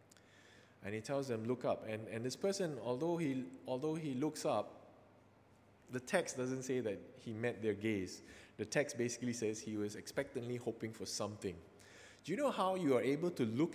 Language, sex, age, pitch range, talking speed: English, male, 20-39, 100-125 Hz, 190 wpm